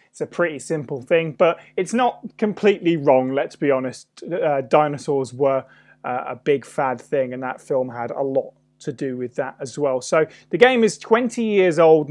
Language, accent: English, British